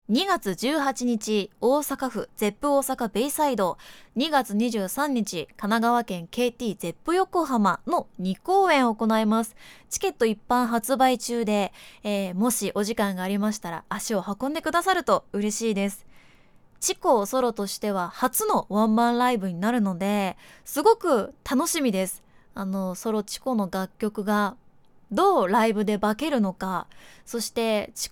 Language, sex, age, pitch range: Japanese, female, 20-39, 200-260 Hz